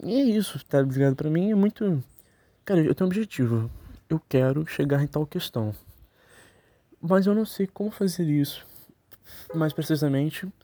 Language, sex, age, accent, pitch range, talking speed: Portuguese, male, 20-39, Brazilian, 125-175 Hz, 165 wpm